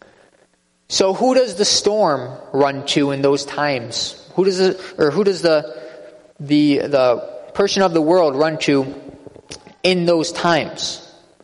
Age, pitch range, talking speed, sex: 20-39, 150-180 Hz, 145 wpm, male